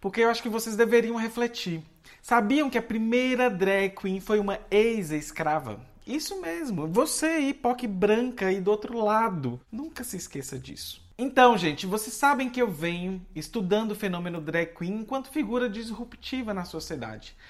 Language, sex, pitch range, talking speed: Portuguese, male, 170-235 Hz, 160 wpm